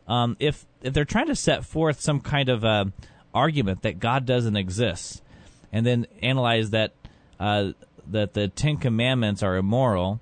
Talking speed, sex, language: 165 wpm, male, English